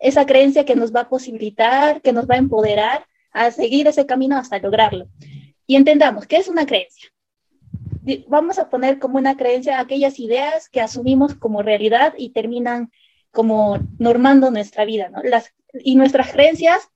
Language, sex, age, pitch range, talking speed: Spanish, female, 20-39, 225-280 Hz, 165 wpm